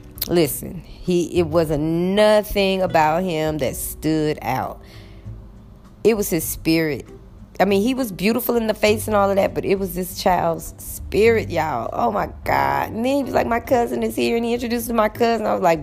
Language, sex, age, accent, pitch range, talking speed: English, female, 20-39, American, 140-195 Hz, 210 wpm